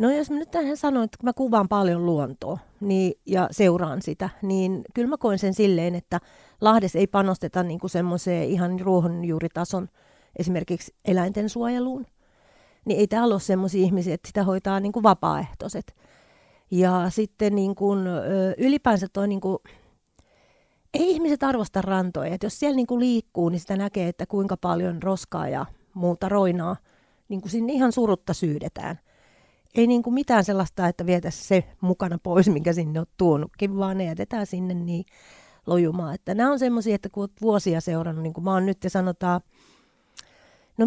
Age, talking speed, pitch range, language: 40-59, 155 wpm, 175-210 Hz, Finnish